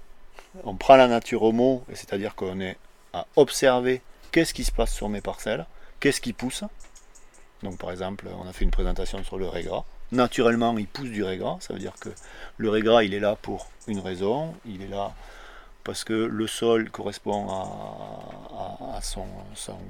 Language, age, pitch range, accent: French, 40-59, 95-115 Hz, French